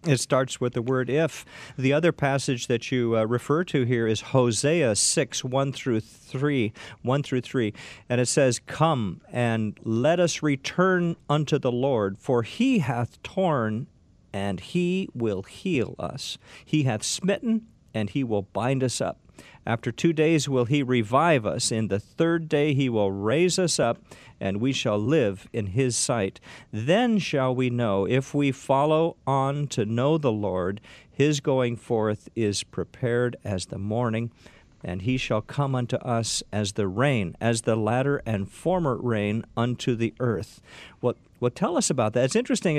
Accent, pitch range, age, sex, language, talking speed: American, 115-150 Hz, 50-69, male, English, 170 wpm